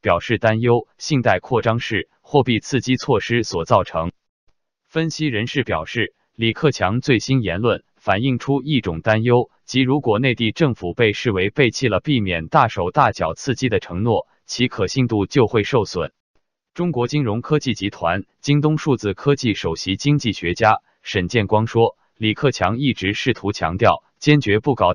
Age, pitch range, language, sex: 20-39, 105-135 Hz, Chinese, male